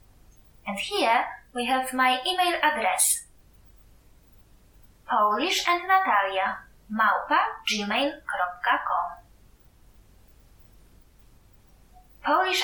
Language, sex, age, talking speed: English, female, 20-39, 55 wpm